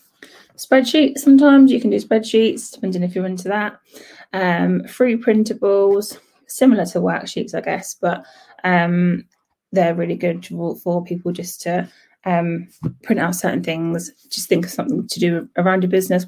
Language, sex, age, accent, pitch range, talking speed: English, female, 20-39, British, 175-210 Hz, 155 wpm